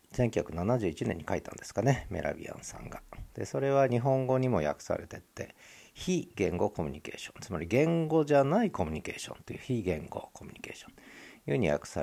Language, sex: Japanese, male